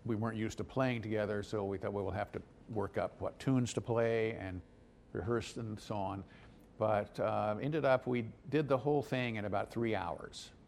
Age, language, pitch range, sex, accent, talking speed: 50-69, English, 100-120 Hz, male, American, 210 wpm